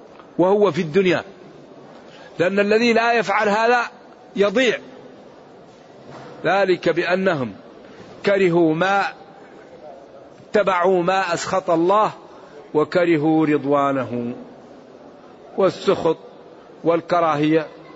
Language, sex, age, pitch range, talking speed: Arabic, male, 50-69, 160-195 Hz, 70 wpm